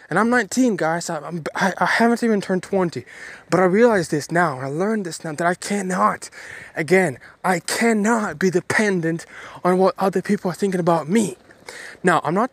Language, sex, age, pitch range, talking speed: English, male, 20-39, 175-210 Hz, 185 wpm